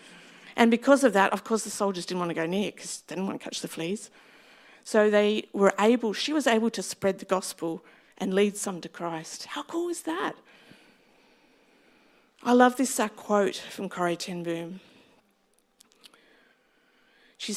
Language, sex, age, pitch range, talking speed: English, female, 50-69, 190-235 Hz, 170 wpm